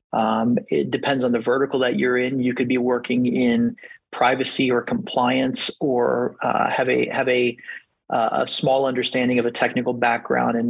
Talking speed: 175 wpm